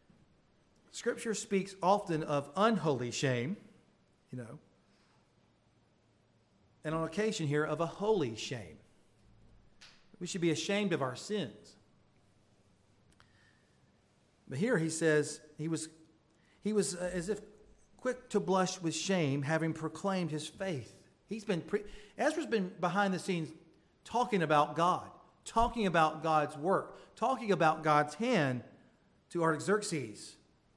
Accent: American